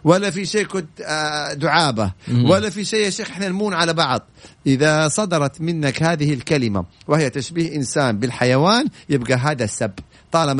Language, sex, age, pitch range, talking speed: Arabic, male, 50-69, 125-170 Hz, 135 wpm